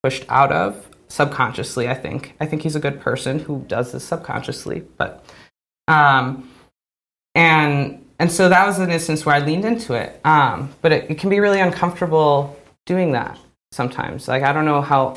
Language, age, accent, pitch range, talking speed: English, 20-39, American, 135-175 Hz, 180 wpm